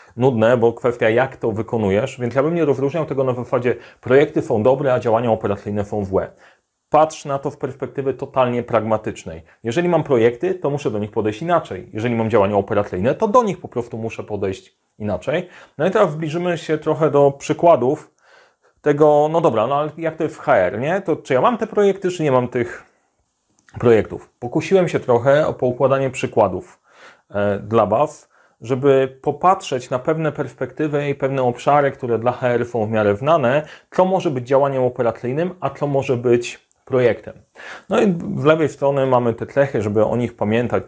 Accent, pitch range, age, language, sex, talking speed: native, 115-155 Hz, 30-49, Polish, male, 180 wpm